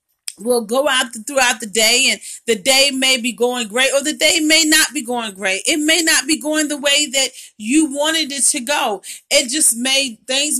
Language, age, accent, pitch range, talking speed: English, 40-59, American, 240-290 Hz, 215 wpm